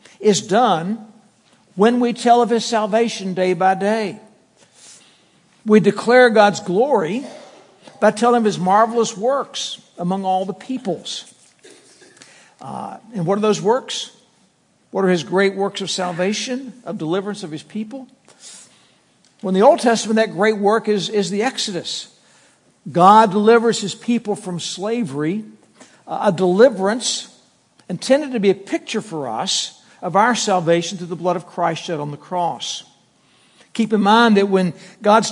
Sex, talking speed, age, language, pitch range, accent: male, 150 wpm, 60-79, English, 180-220 Hz, American